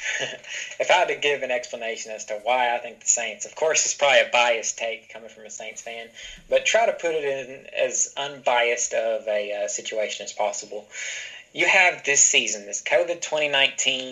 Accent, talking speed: American, 195 wpm